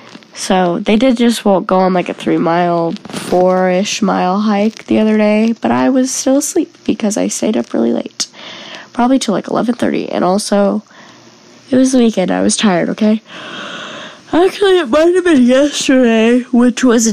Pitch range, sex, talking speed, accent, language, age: 210-280 Hz, female, 170 wpm, American, English, 10-29